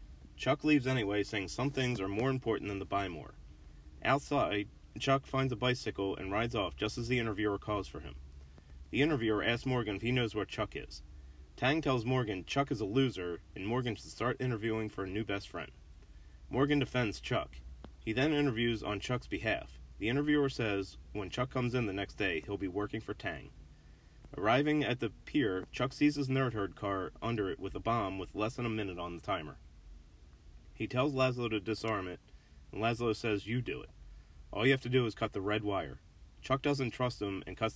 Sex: male